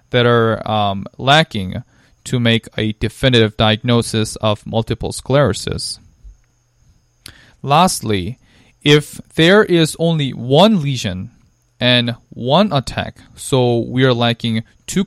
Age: 20-39